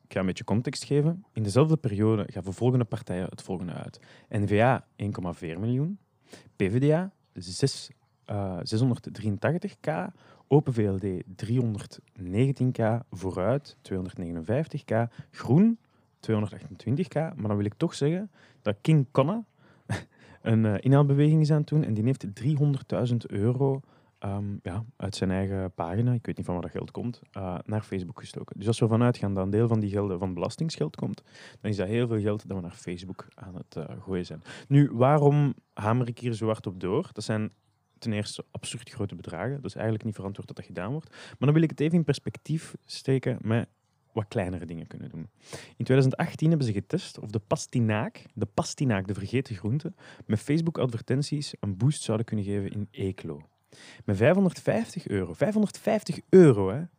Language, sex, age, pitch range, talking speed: Dutch, male, 30-49, 105-145 Hz, 170 wpm